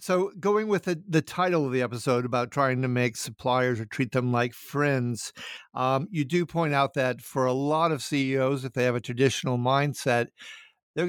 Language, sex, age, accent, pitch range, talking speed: English, male, 50-69, American, 125-145 Hz, 200 wpm